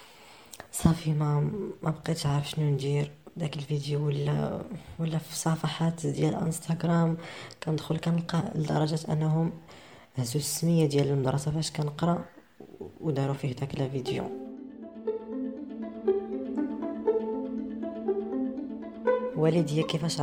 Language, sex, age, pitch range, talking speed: Arabic, female, 20-39, 140-160 Hz, 90 wpm